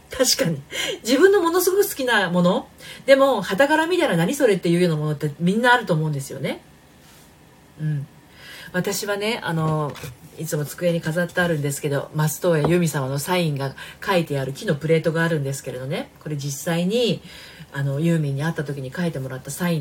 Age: 40-59